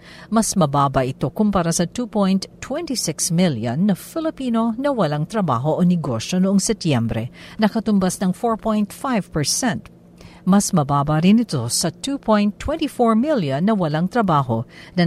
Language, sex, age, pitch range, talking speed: Filipino, female, 50-69, 165-225 Hz, 120 wpm